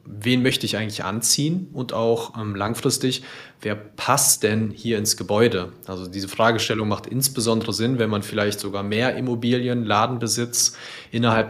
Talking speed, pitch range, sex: 150 wpm, 110-130 Hz, male